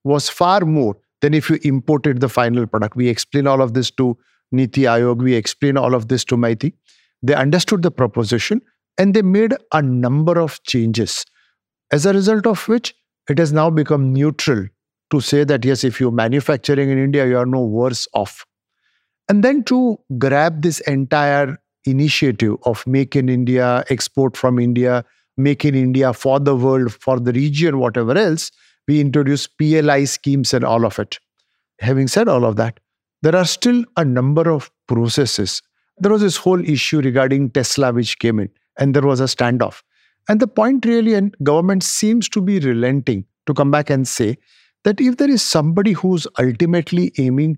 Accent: Indian